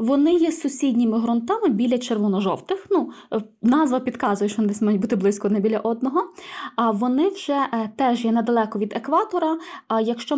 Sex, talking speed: female, 155 wpm